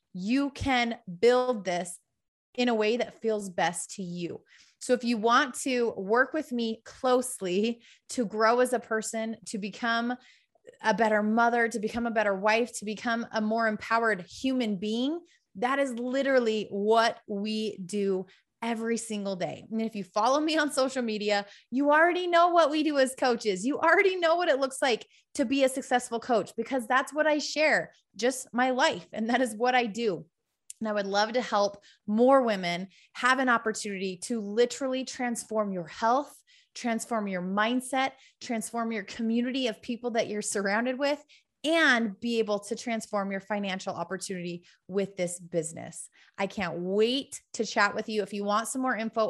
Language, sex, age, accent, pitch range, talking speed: English, female, 20-39, American, 210-260 Hz, 180 wpm